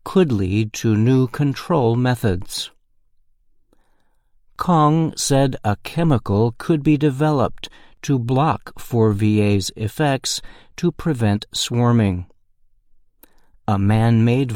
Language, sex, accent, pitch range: Chinese, male, American, 105-135 Hz